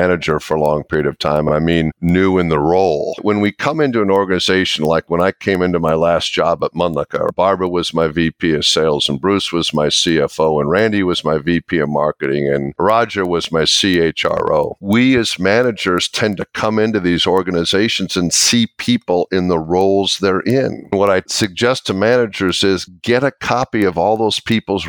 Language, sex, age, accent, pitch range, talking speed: English, male, 50-69, American, 90-115 Hz, 200 wpm